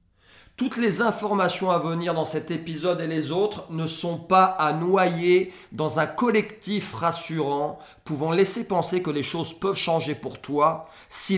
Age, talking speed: 40-59, 165 wpm